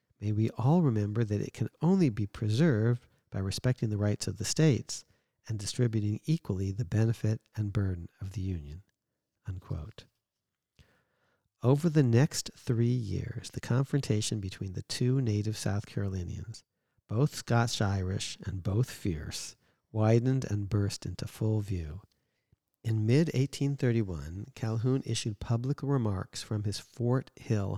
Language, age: English, 50-69